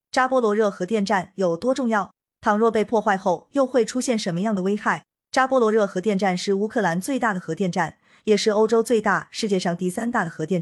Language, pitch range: Chinese, 175-225 Hz